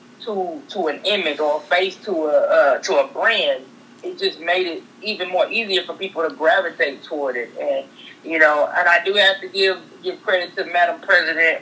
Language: English